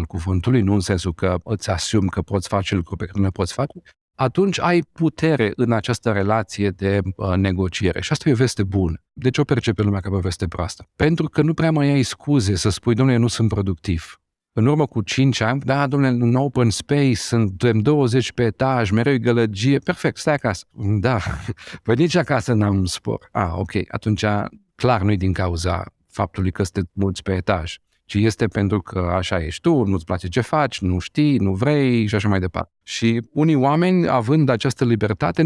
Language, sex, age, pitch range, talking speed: Romanian, male, 50-69, 100-130 Hz, 200 wpm